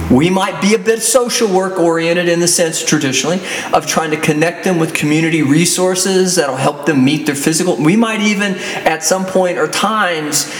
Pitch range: 145-195 Hz